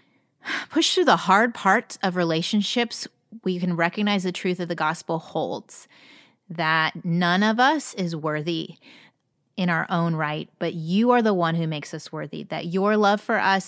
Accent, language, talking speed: American, English, 175 wpm